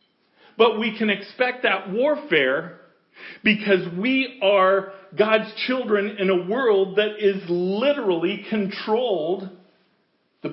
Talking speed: 110 wpm